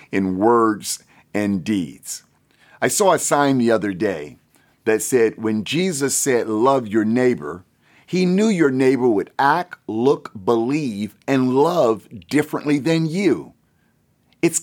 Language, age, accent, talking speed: English, 50-69, American, 135 wpm